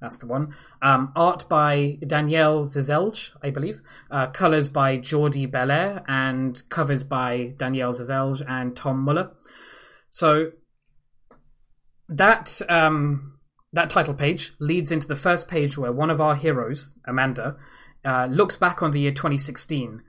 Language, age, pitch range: English, 20-39, 135-160 Hz